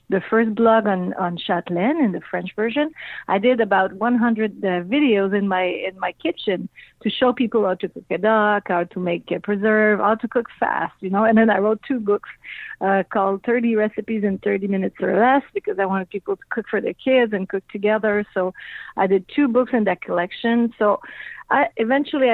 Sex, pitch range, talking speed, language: female, 195-245 Hz, 210 wpm, English